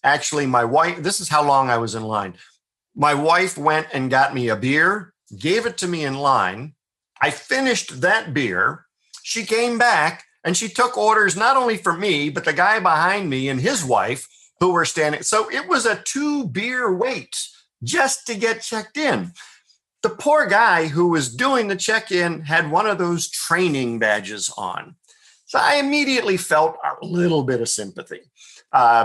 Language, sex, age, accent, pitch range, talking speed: English, male, 50-69, American, 150-240 Hz, 180 wpm